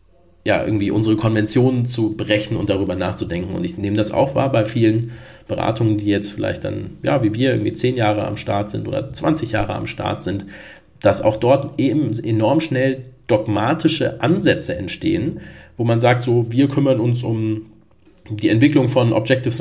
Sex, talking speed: male, 175 wpm